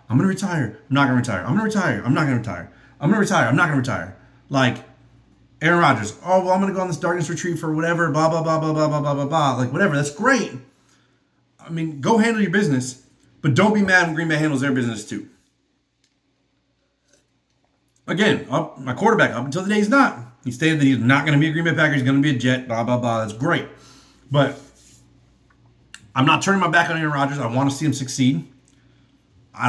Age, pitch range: 30-49, 125-155 Hz